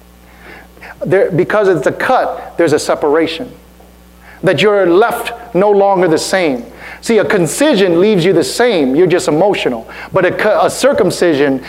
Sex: male